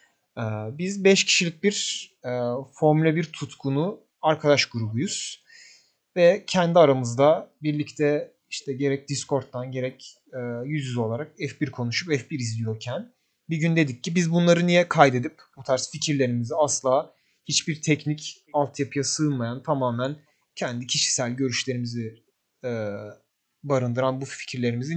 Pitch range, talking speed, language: 120-155 Hz, 120 wpm, Turkish